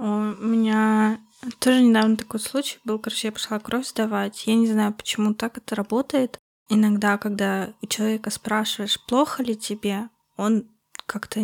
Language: Russian